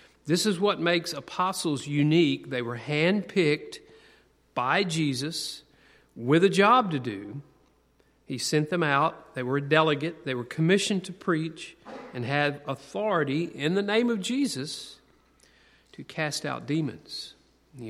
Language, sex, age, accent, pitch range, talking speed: English, male, 40-59, American, 135-170 Hz, 140 wpm